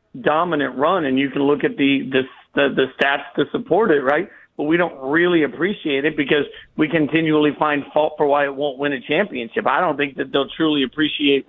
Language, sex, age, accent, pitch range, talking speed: English, male, 50-69, American, 140-160 Hz, 215 wpm